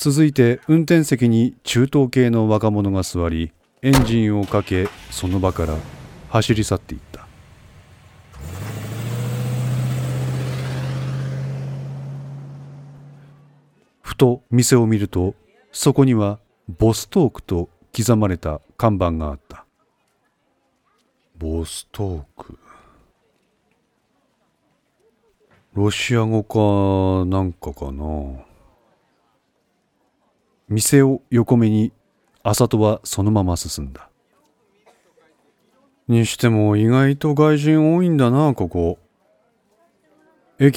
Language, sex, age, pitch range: Japanese, male, 40-59, 95-125 Hz